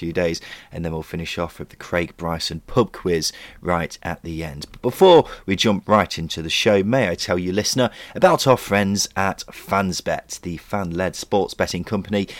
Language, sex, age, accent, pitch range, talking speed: English, male, 30-49, British, 90-120 Hz, 195 wpm